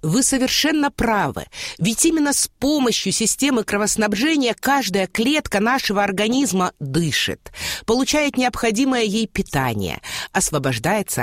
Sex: female